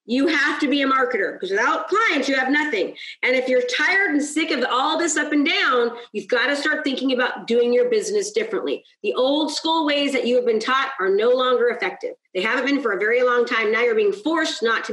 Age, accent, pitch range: 40-59, American, 255-385 Hz